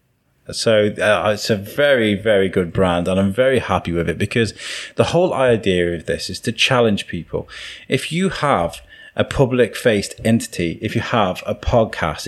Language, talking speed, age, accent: English, 170 wpm, 30-49, British